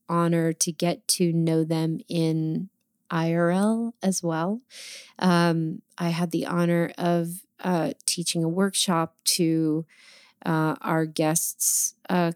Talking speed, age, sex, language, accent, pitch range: 120 wpm, 30-49, female, English, American, 165-185 Hz